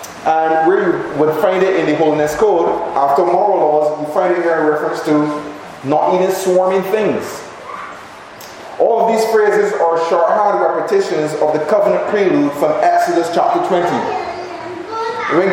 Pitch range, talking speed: 165-220 Hz, 145 wpm